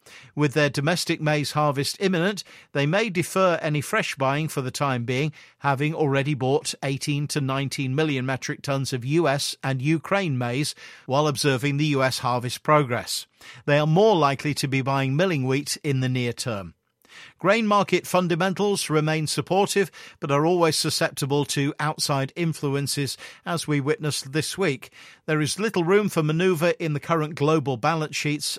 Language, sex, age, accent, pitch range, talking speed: English, male, 50-69, British, 135-170 Hz, 165 wpm